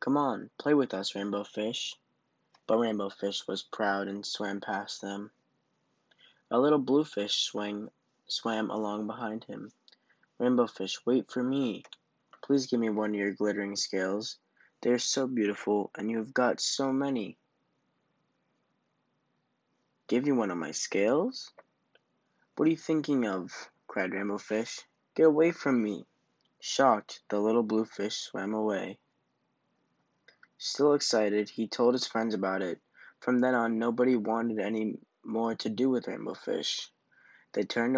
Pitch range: 105-125 Hz